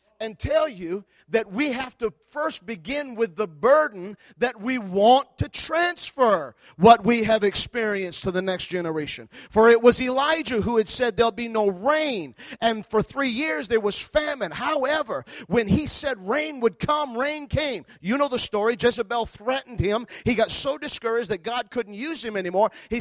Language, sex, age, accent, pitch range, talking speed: English, male, 40-59, American, 205-255 Hz, 185 wpm